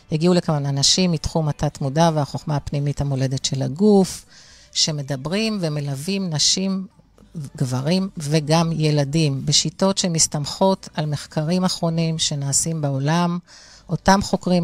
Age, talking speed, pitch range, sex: 40-59, 105 wpm, 145-180 Hz, female